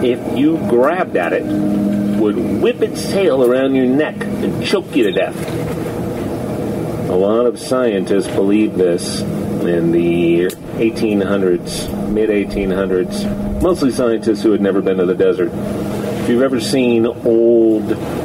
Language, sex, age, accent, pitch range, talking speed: English, male, 40-59, American, 95-115 Hz, 140 wpm